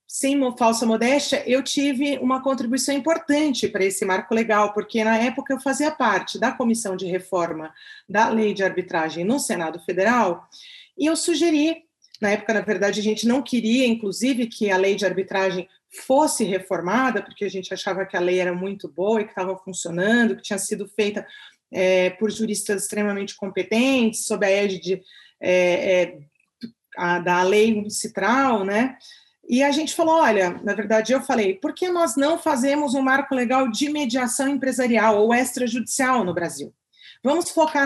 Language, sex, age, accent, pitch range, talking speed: Portuguese, female, 30-49, Brazilian, 195-270 Hz, 165 wpm